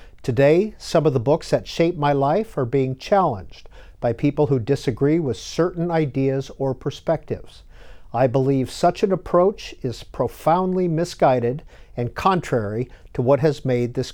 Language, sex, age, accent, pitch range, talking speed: English, male, 50-69, American, 125-170 Hz, 155 wpm